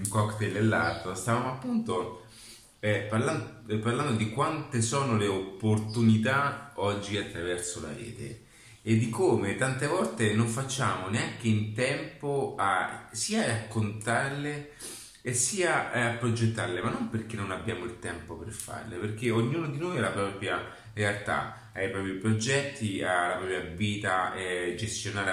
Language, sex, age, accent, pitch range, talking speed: Italian, male, 30-49, native, 100-115 Hz, 145 wpm